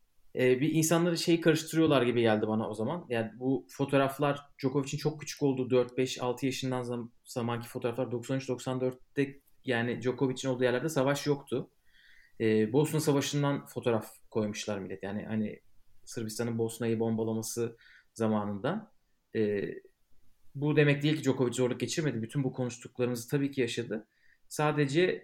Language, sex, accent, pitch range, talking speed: Turkish, male, native, 115-140 Hz, 130 wpm